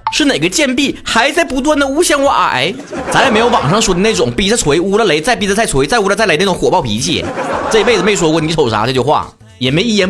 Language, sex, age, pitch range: Chinese, male, 30-49, 185-255 Hz